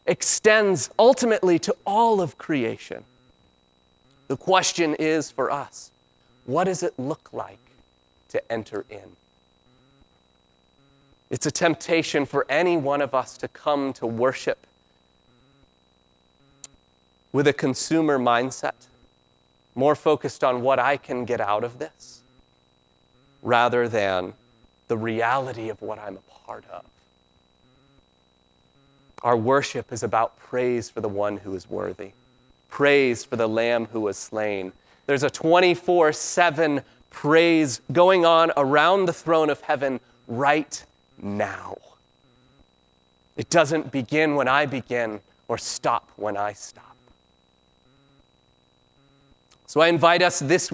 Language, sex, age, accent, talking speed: English, male, 30-49, American, 120 wpm